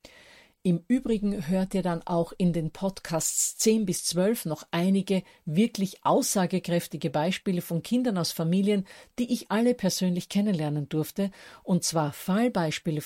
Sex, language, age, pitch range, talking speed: female, German, 50-69, 160-210 Hz, 140 wpm